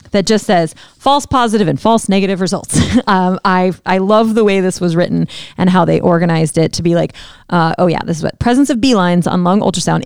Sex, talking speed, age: female, 225 wpm, 30-49